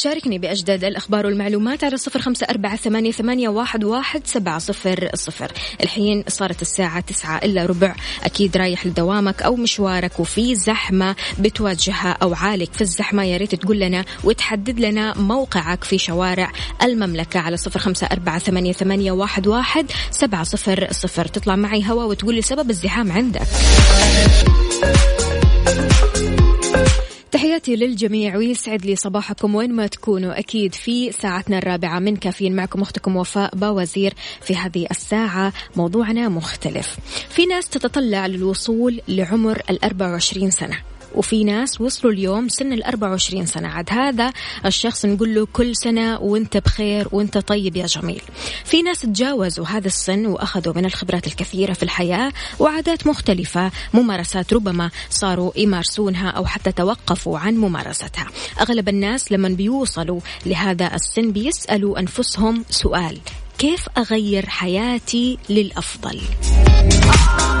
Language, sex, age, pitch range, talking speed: Arabic, female, 20-39, 185-225 Hz, 120 wpm